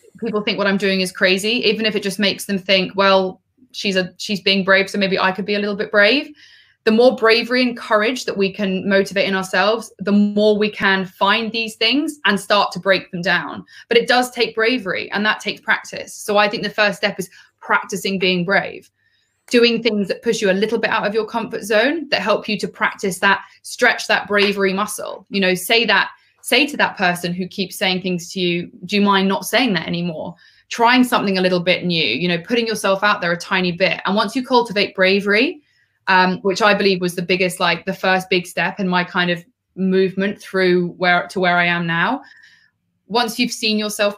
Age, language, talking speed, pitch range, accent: 20-39, English, 225 wpm, 190-220 Hz, British